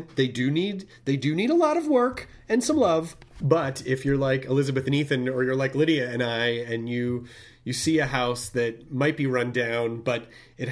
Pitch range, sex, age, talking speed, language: 115-145 Hz, male, 30-49, 220 wpm, English